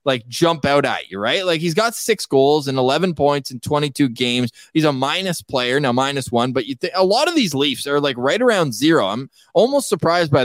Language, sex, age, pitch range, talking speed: English, male, 20-39, 130-165 Hz, 235 wpm